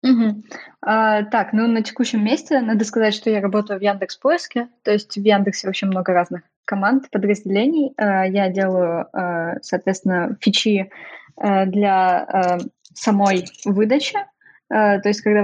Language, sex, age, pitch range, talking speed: Russian, female, 20-39, 195-230 Hz, 120 wpm